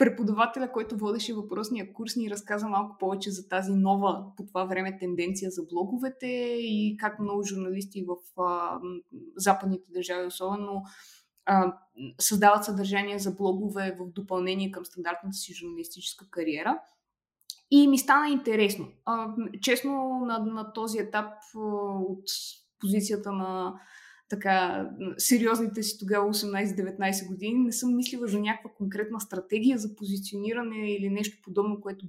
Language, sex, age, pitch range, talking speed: Bulgarian, female, 20-39, 190-240 Hz, 135 wpm